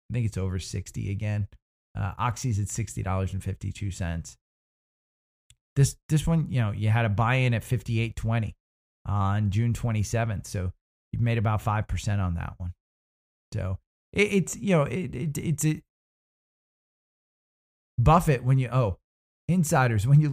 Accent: American